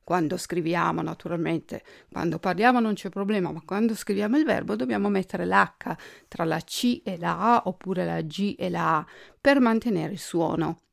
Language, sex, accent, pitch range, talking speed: Italian, female, native, 170-215 Hz, 175 wpm